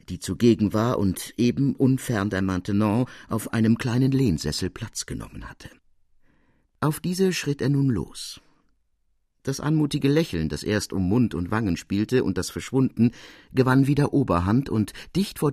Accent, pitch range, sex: German, 90-125 Hz, male